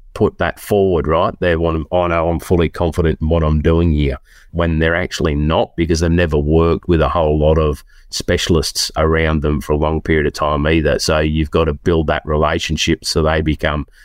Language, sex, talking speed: English, male, 215 wpm